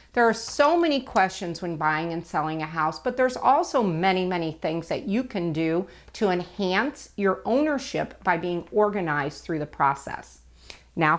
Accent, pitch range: American, 165-225 Hz